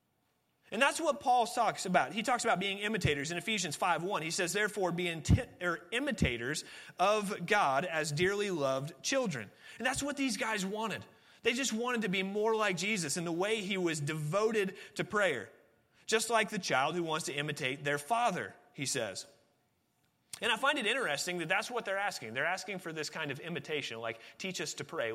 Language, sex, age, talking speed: English, male, 30-49, 200 wpm